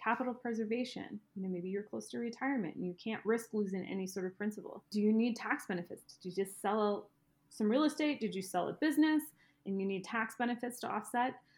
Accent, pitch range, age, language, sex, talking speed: American, 195-250 Hz, 20-39, English, female, 220 wpm